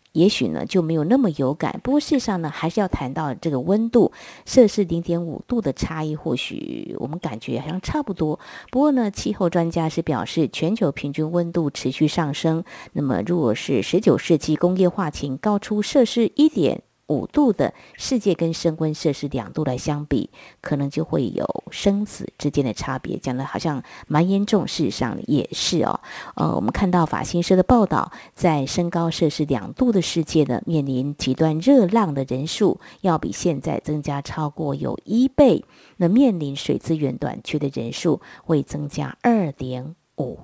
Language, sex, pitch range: Chinese, female, 145-195 Hz